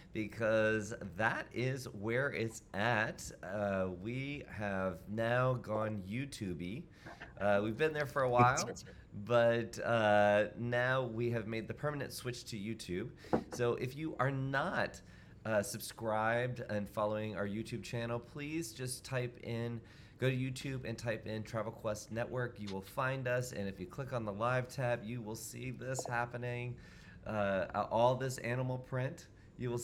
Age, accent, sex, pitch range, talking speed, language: 30-49, American, male, 105-125 Hz, 155 wpm, English